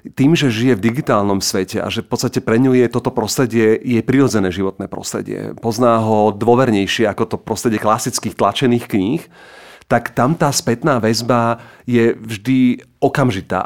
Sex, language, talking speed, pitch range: male, Slovak, 160 wpm, 110-135 Hz